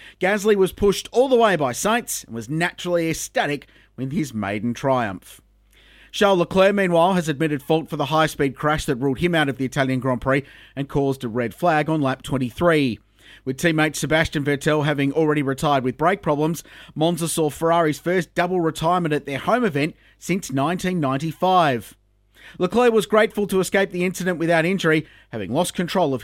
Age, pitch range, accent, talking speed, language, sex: 30-49, 130-180 Hz, Australian, 180 wpm, English, male